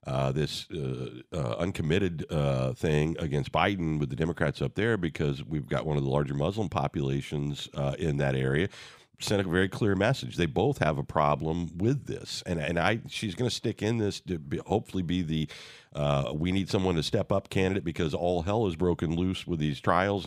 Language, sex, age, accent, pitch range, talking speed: English, male, 50-69, American, 75-100 Hz, 190 wpm